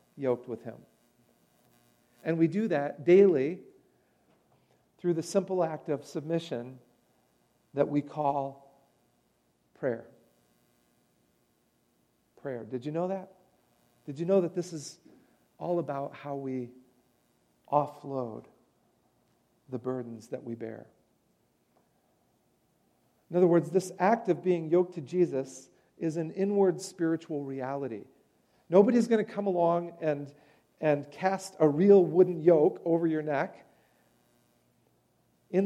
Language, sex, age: English, male, 50-69